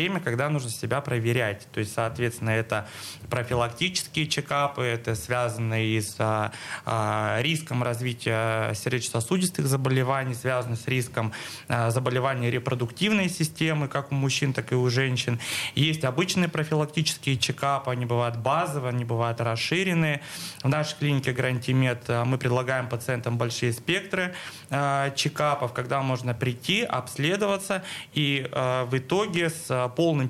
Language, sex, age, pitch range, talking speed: Russian, male, 20-39, 120-150 Hz, 115 wpm